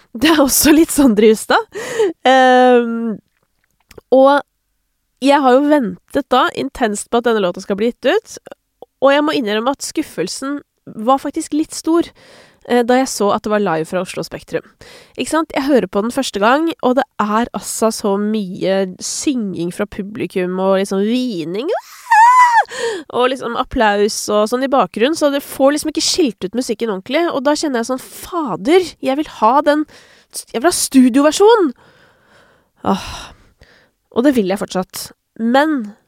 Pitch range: 205-290 Hz